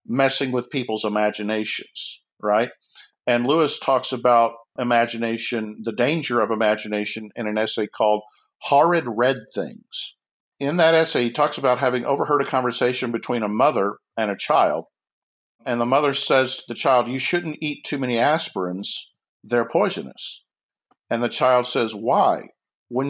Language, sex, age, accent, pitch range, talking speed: English, male, 50-69, American, 115-140 Hz, 150 wpm